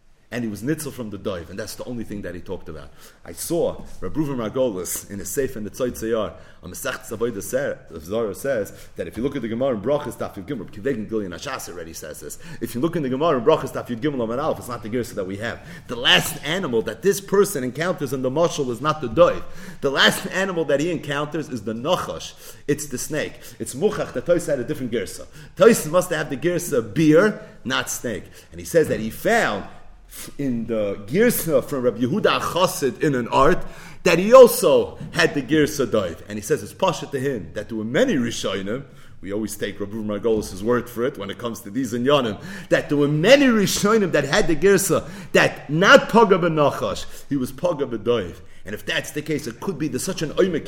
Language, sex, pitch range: English, male, 120-195 Hz